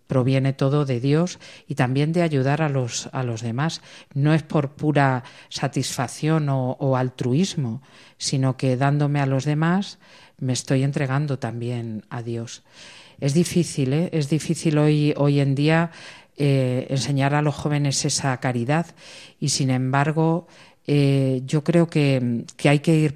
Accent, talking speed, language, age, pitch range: Spanish, 155 wpm, Spanish, 40-59, 135-155 Hz